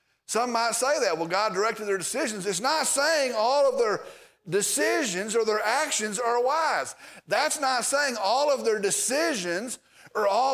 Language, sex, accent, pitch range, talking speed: English, male, American, 195-290 Hz, 170 wpm